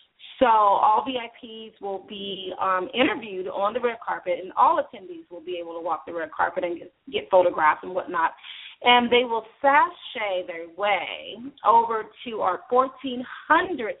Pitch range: 185-240 Hz